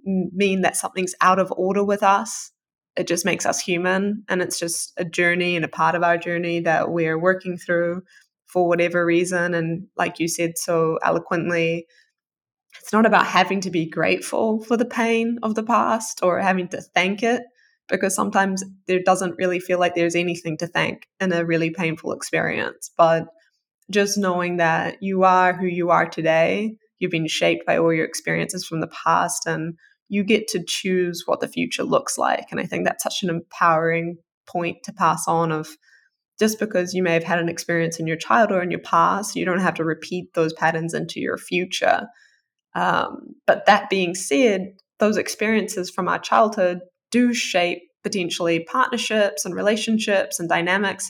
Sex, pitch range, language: female, 170-200 Hz, English